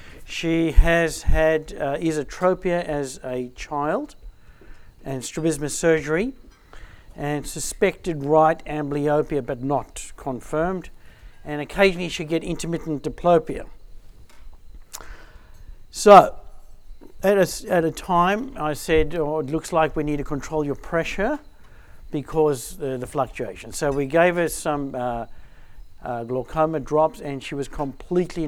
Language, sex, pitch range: English, male, 140-170 Hz